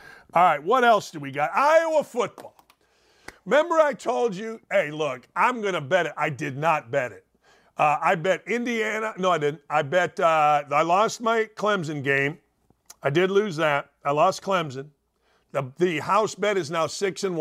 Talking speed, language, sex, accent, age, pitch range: 190 wpm, English, male, American, 50-69, 155-215 Hz